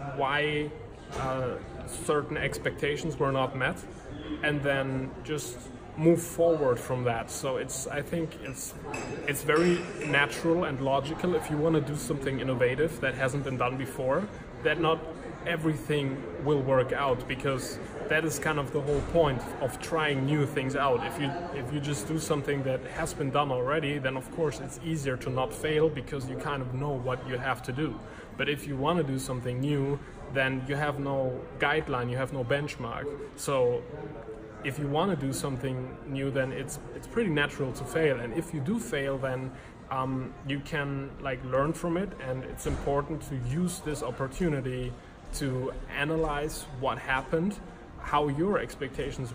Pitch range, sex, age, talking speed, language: 130-150 Hz, male, 20-39, 175 wpm, English